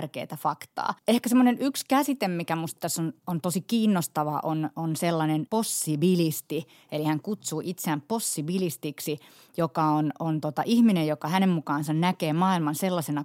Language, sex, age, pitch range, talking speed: Finnish, female, 30-49, 155-185 Hz, 140 wpm